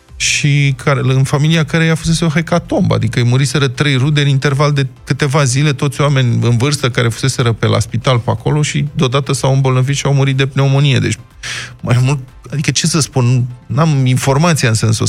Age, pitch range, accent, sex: 20-39, 115-145 Hz, native, male